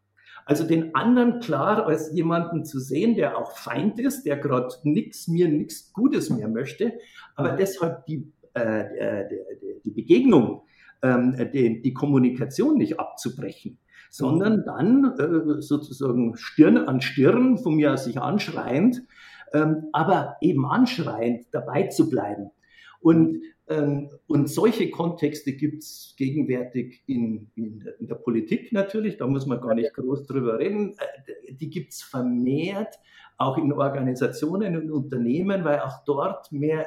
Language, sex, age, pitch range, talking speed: German, male, 50-69, 135-195 Hz, 145 wpm